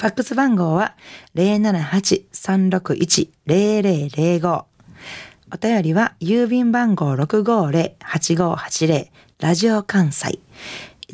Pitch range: 145-200 Hz